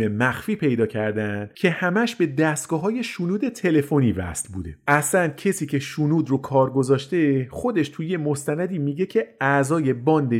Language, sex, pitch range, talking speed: Persian, male, 115-165 Hz, 150 wpm